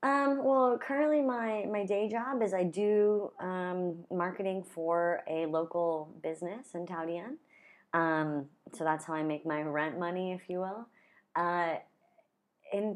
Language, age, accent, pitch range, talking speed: English, 20-39, American, 145-200 Hz, 150 wpm